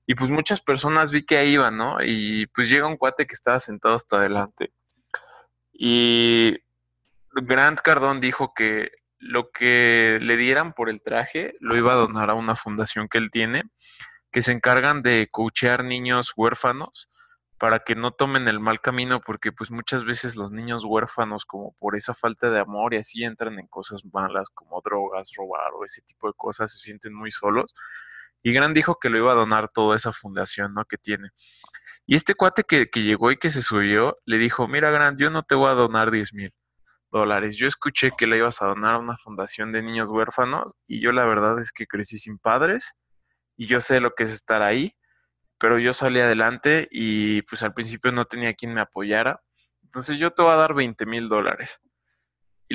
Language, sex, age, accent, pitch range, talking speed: Spanish, male, 20-39, Mexican, 110-130 Hz, 200 wpm